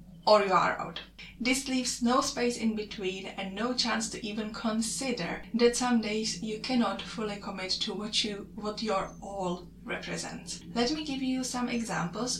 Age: 20-39